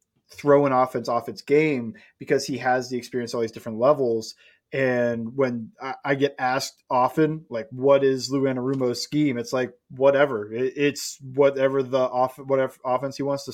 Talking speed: 175 wpm